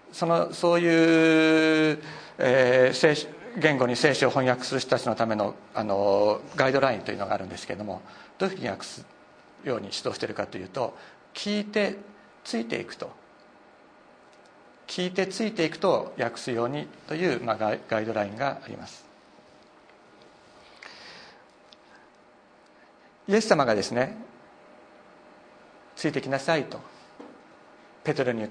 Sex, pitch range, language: male, 130-180 Hz, Japanese